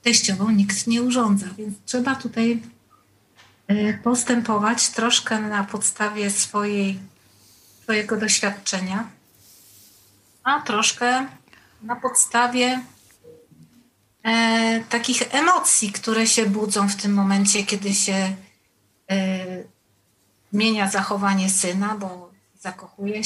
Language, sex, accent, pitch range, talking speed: Polish, female, native, 190-240 Hz, 85 wpm